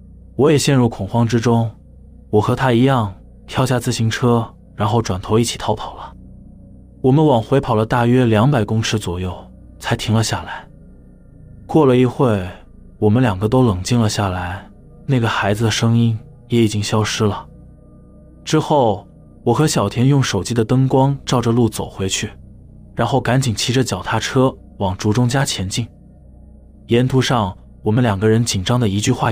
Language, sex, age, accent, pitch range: Chinese, male, 20-39, native, 100-125 Hz